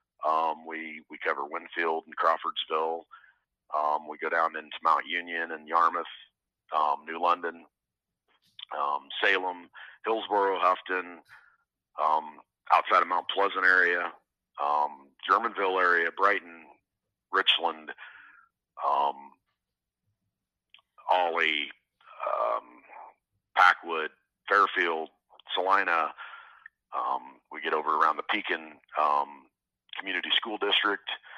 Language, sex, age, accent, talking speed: English, male, 40-59, American, 100 wpm